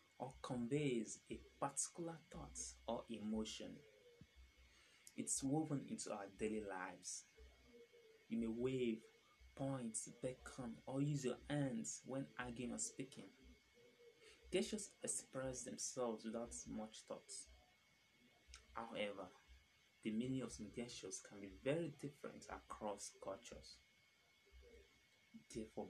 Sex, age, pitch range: male, 20-39, 100-140 Hz